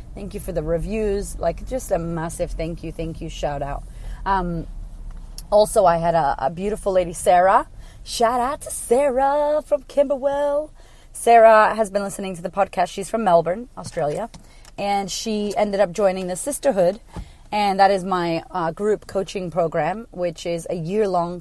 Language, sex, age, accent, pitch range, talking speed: English, female, 30-49, American, 165-200 Hz, 170 wpm